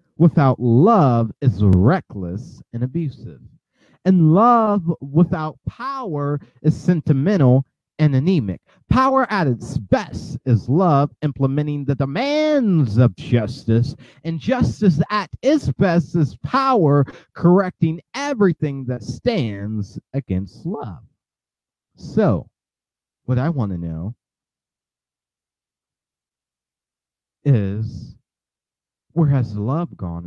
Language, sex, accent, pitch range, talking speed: English, male, American, 115-160 Hz, 95 wpm